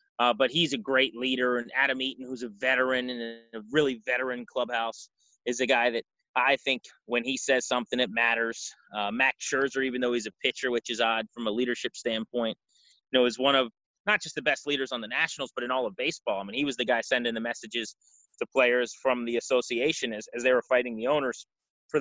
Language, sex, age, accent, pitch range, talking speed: English, male, 30-49, American, 115-135 Hz, 230 wpm